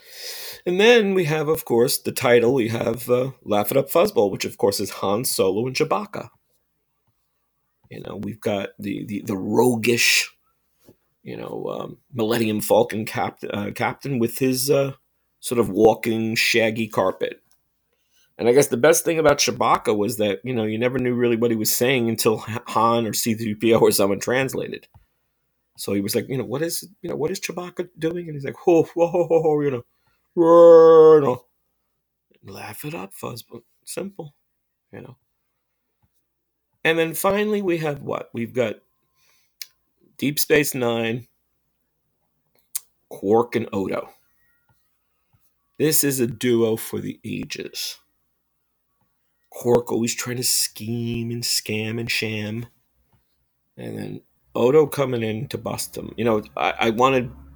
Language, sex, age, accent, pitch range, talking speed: English, male, 40-59, American, 115-155 Hz, 155 wpm